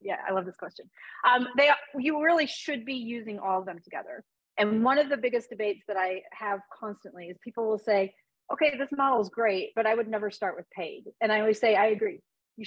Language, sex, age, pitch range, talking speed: English, female, 40-59, 200-260 Hz, 230 wpm